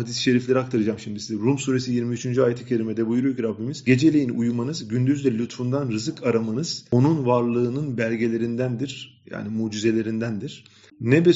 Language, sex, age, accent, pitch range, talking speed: Turkish, male, 40-59, native, 110-130 Hz, 130 wpm